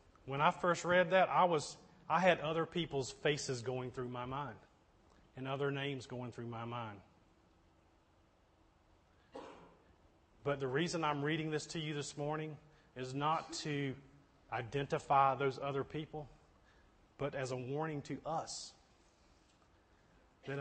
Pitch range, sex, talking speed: 130-175 Hz, male, 135 wpm